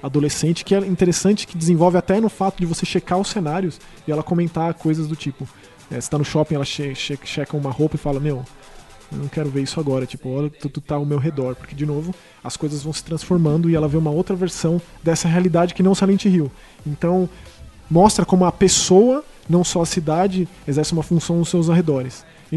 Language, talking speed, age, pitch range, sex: Portuguese, 225 wpm, 20-39, 150-180 Hz, male